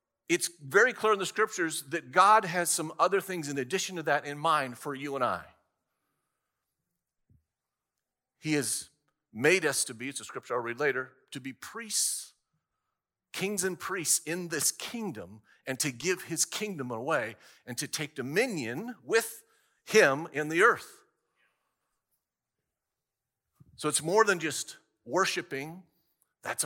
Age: 50-69